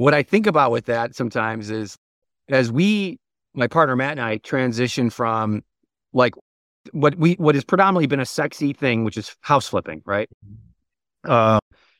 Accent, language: American, English